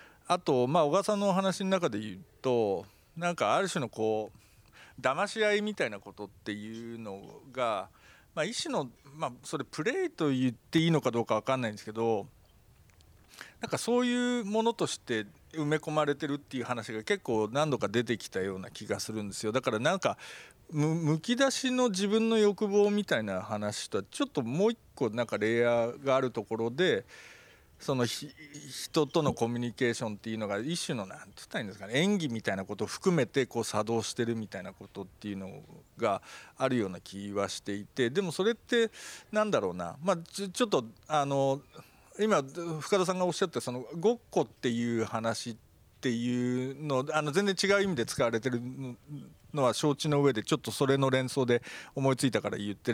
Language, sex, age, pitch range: Japanese, male, 40-59, 115-175 Hz